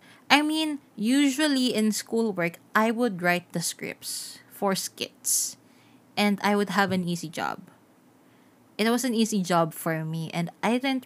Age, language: 20-39, Filipino